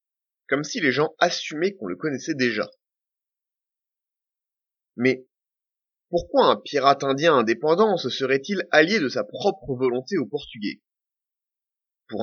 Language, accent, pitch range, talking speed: French, French, 120-180 Hz, 125 wpm